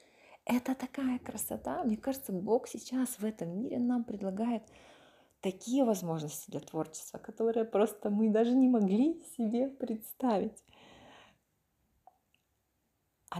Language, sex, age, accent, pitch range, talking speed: Ukrainian, female, 20-39, native, 185-225 Hz, 110 wpm